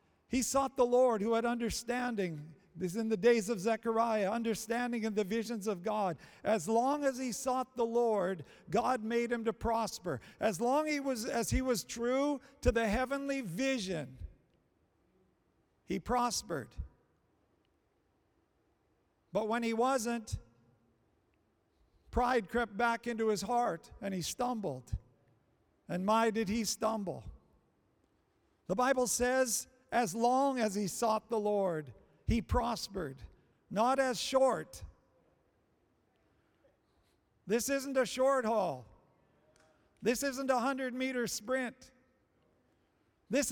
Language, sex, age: English, male, 50-69